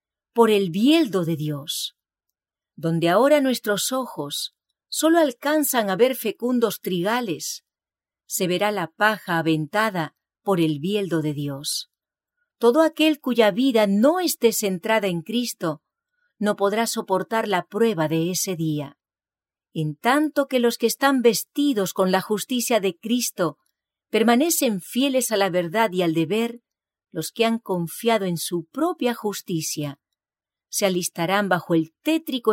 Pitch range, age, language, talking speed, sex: 165-240 Hz, 40-59, English, 140 wpm, female